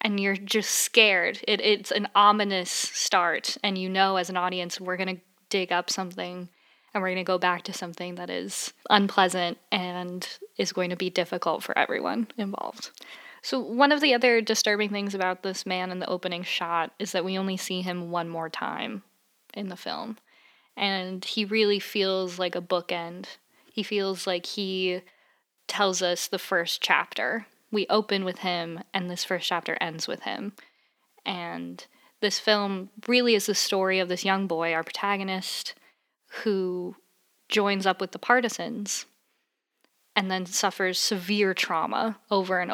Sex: female